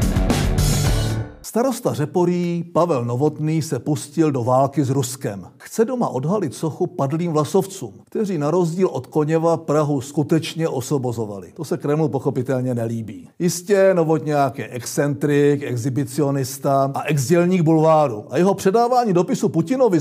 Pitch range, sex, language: 145-195 Hz, male, Czech